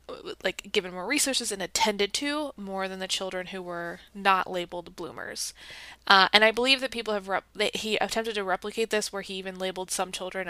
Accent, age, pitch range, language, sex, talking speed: American, 20-39, 185-230 Hz, English, female, 205 wpm